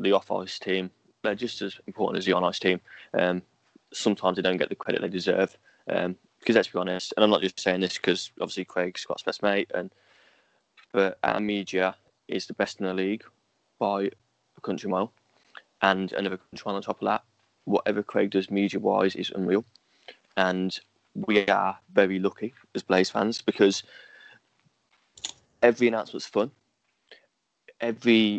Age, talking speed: 20-39, 165 wpm